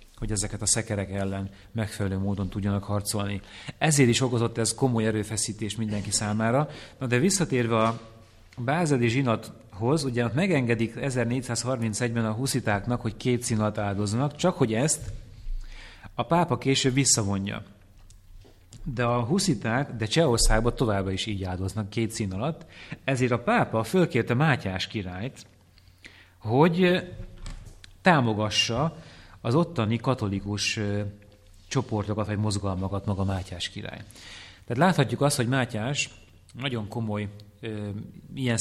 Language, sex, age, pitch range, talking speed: English, male, 30-49, 100-125 Hz, 120 wpm